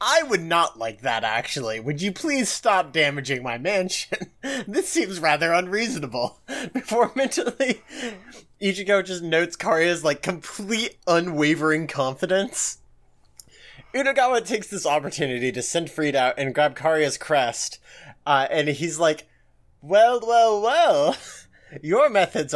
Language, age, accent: English, 30-49, American